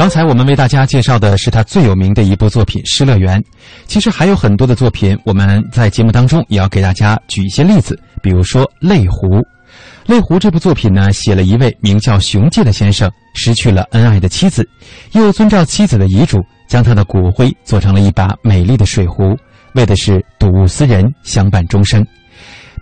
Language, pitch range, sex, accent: Chinese, 100-135 Hz, male, native